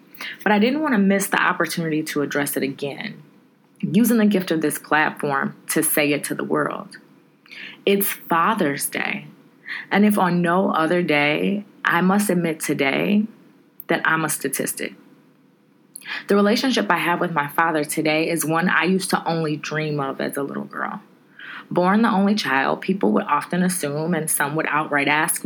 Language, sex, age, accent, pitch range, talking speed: English, female, 20-39, American, 150-195 Hz, 175 wpm